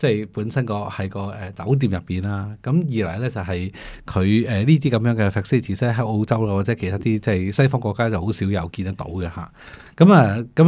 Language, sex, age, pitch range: Chinese, male, 20-39, 95-125 Hz